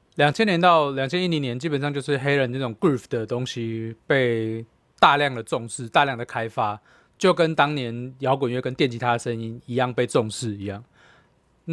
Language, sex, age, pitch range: Chinese, male, 20-39, 115-150 Hz